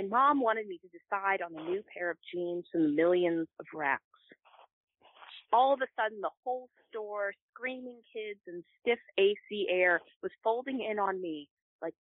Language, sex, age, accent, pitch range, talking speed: English, female, 30-49, American, 170-215 Hz, 180 wpm